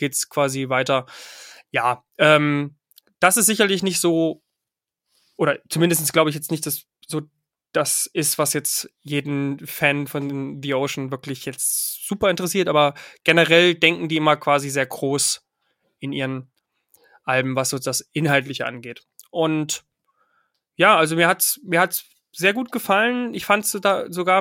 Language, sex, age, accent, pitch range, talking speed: German, male, 20-39, German, 145-175 Hz, 155 wpm